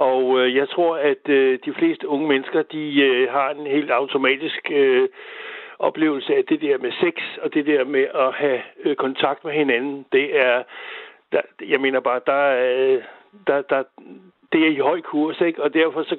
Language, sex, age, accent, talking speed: Danish, male, 60-79, native, 165 wpm